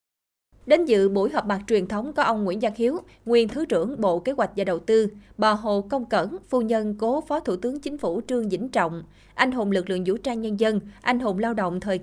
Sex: female